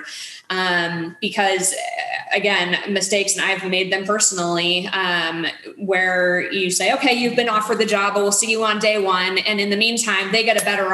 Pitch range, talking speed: 185-215 Hz, 180 wpm